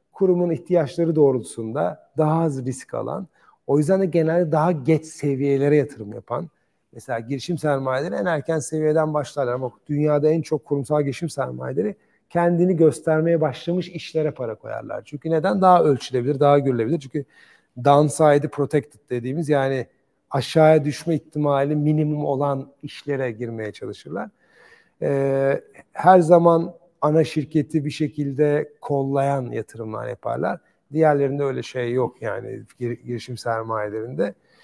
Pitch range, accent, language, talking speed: 130-155 Hz, Turkish, English, 125 wpm